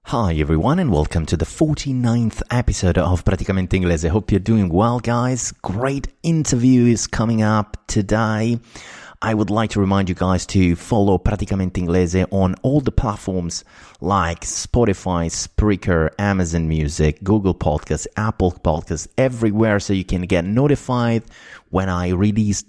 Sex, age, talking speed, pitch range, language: male, 30-49, 150 wpm, 85-110 Hz, Italian